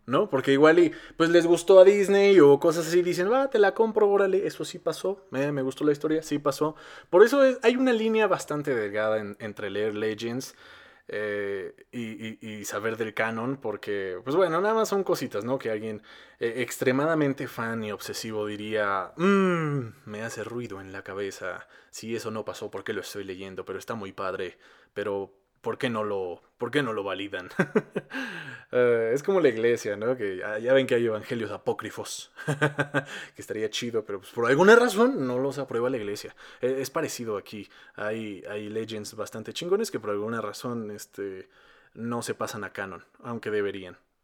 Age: 20-39